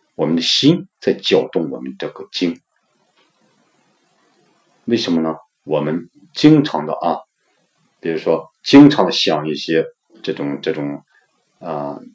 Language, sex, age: Chinese, male, 50-69